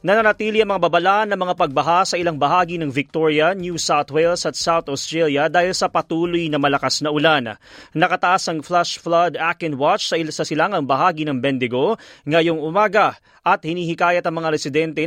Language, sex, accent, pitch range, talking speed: Filipino, male, native, 150-180 Hz, 175 wpm